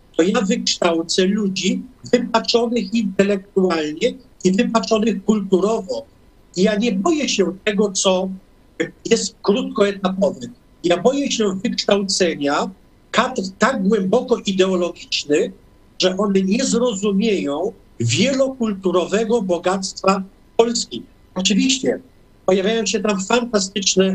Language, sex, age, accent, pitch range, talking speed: Polish, male, 50-69, native, 185-225 Hz, 90 wpm